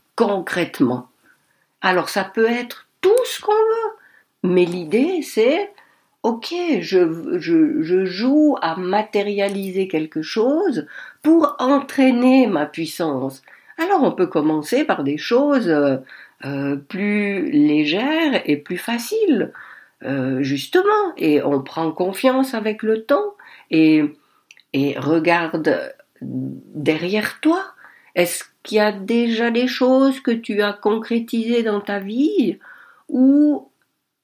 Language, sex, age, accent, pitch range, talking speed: French, female, 60-79, French, 180-270 Hz, 115 wpm